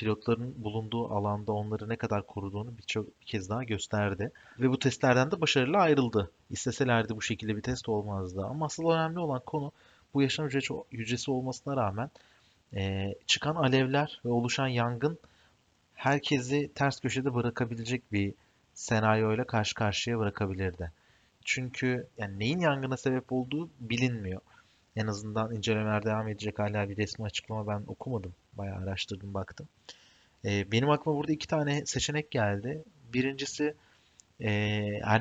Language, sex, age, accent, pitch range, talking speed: Turkish, male, 30-49, native, 105-130 Hz, 135 wpm